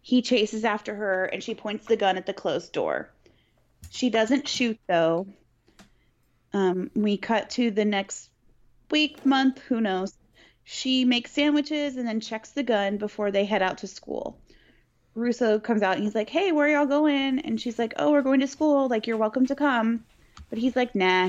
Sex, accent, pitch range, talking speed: female, American, 195-250 Hz, 195 wpm